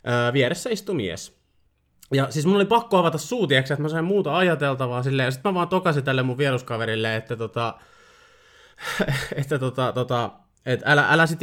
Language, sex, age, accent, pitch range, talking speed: Finnish, male, 20-39, native, 115-160 Hz, 175 wpm